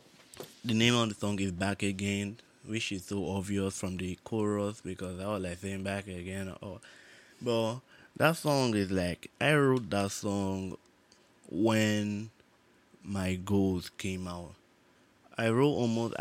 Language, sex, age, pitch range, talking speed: English, male, 20-39, 95-105 Hz, 150 wpm